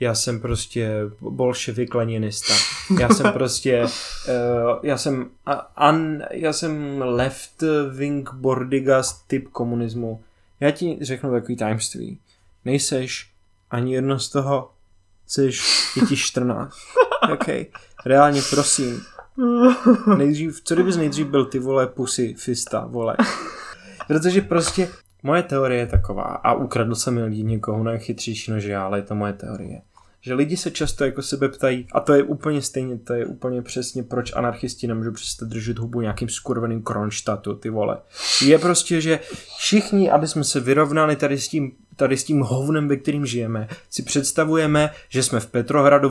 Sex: male